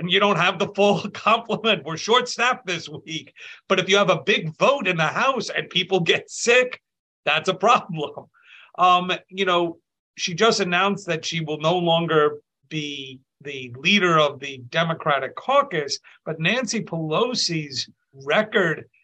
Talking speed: 160 wpm